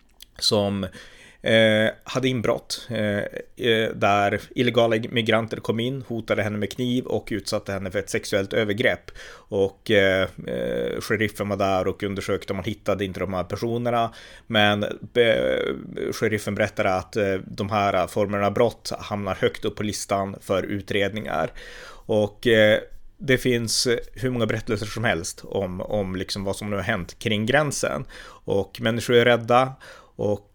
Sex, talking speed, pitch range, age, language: male, 155 wpm, 100-115 Hz, 30-49, Swedish